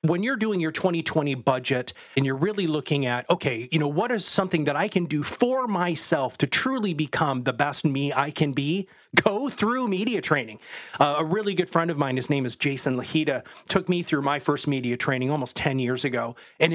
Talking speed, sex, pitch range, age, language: 215 wpm, male, 140-190 Hz, 30-49, English